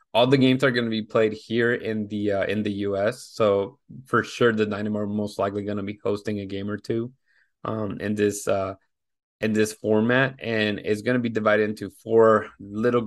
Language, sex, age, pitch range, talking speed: English, male, 20-39, 105-120 Hz, 215 wpm